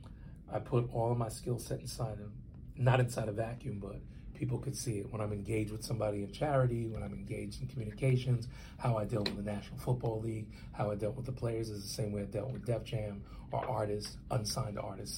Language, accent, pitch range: English, American, 105-125 Hz